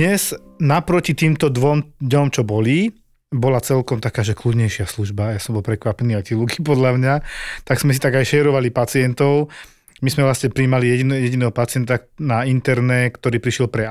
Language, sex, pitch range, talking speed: Slovak, male, 120-140 Hz, 175 wpm